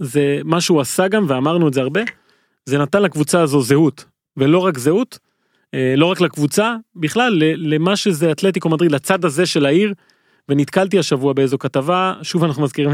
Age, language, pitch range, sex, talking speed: 30-49, Hebrew, 145-185 Hz, male, 170 wpm